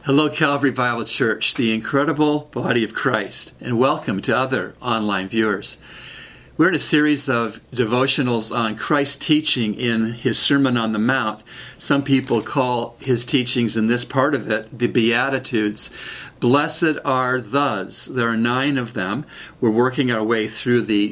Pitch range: 115-140 Hz